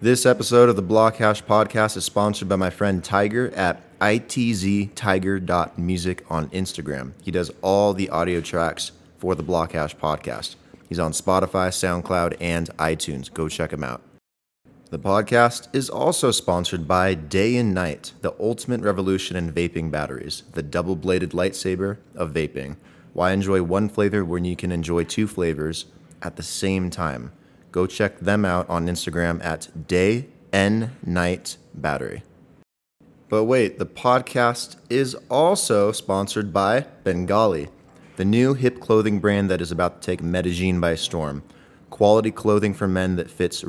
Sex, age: male, 20-39